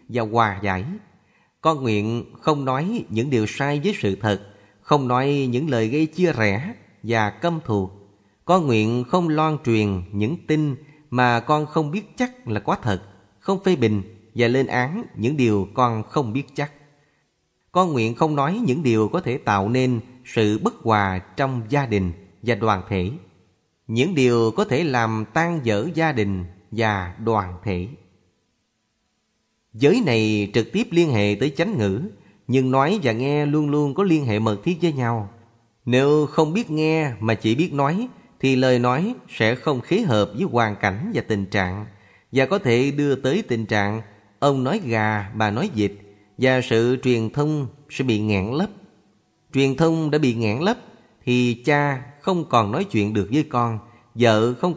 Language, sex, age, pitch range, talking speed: Vietnamese, male, 20-39, 110-150 Hz, 175 wpm